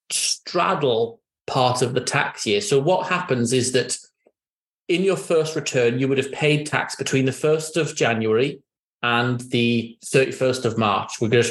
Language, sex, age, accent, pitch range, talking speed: English, male, 30-49, British, 125-155 Hz, 165 wpm